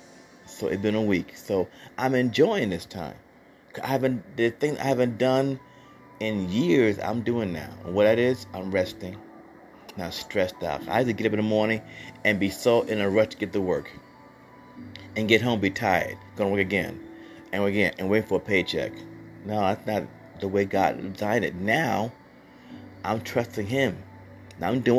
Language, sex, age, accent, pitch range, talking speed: English, male, 30-49, American, 95-115 Hz, 190 wpm